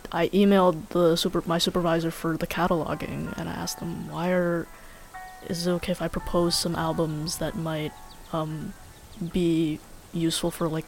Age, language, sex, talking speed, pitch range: 20-39, English, female, 165 wpm, 165-190 Hz